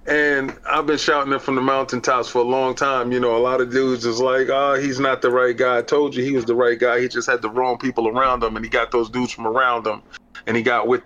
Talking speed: 295 wpm